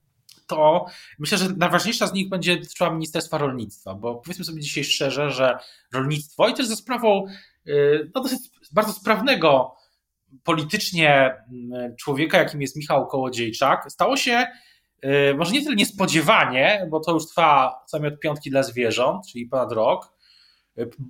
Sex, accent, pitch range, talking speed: male, native, 135-175 Hz, 140 wpm